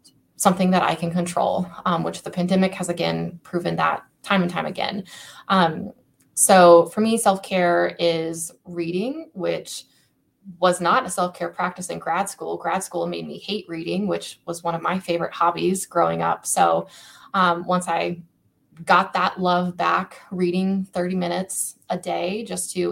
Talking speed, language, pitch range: 165 wpm, English, 170-190 Hz